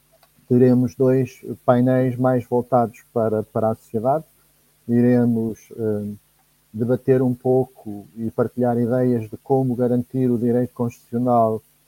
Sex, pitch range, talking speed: male, 120-135 Hz, 115 wpm